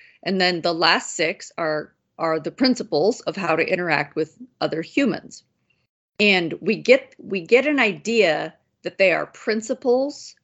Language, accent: English, American